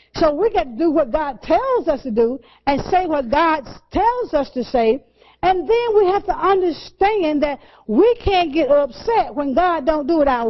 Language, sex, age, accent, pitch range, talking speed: English, female, 50-69, American, 280-380 Hz, 205 wpm